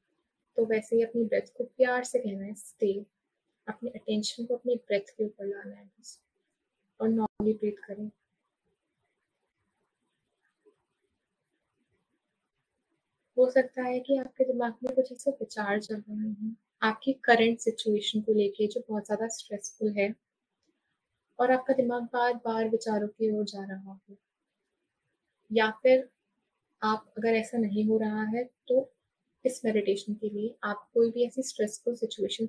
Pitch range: 205-245 Hz